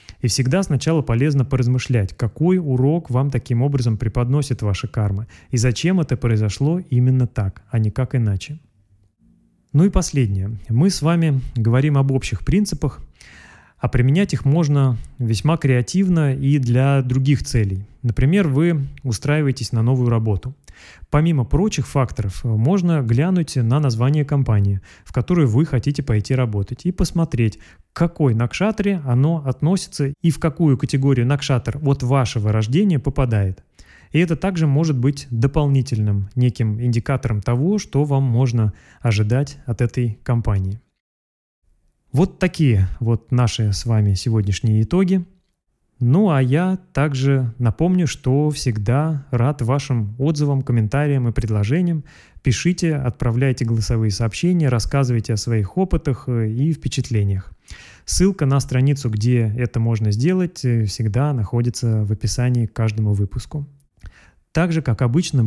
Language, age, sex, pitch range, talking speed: Russian, 20-39, male, 115-145 Hz, 130 wpm